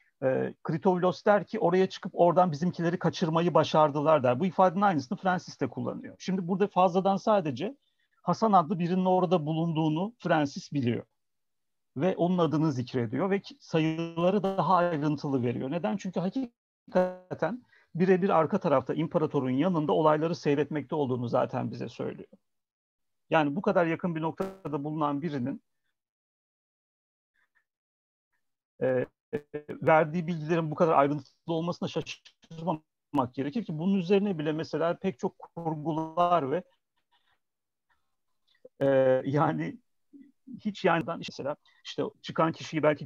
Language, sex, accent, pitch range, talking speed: Turkish, male, native, 150-185 Hz, 120 wpm